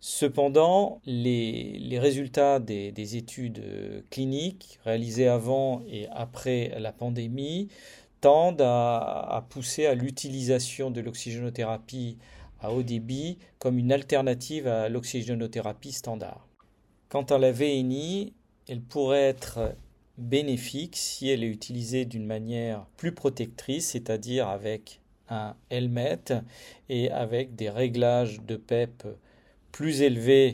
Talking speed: 115 wpm